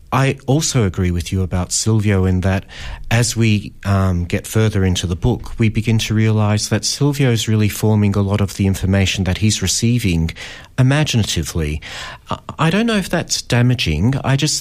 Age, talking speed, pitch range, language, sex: 40-59, 175 wpm, 95-120 Hz, English, male